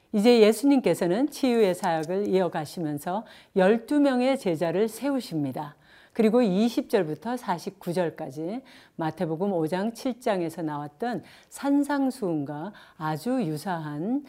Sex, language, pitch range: female, Korean, 165-230 Hz